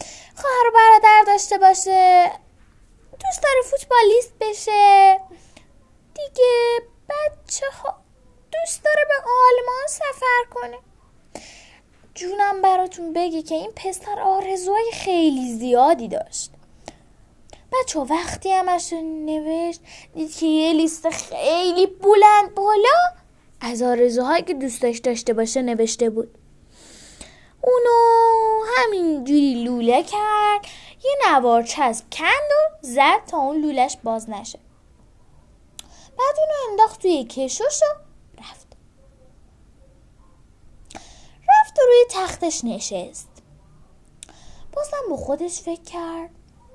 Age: 10-29